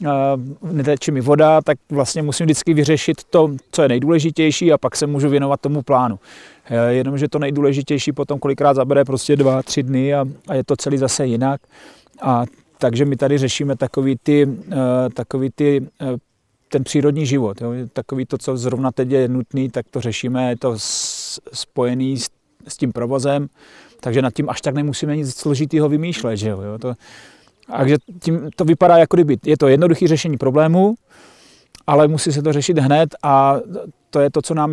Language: Czech